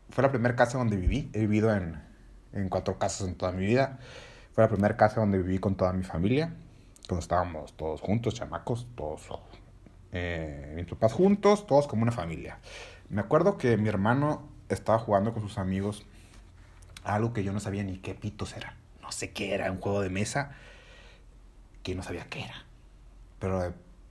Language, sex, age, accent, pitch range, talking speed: Spanish, male, 30-49, Mexican, 95-120 Hz, 180 wpm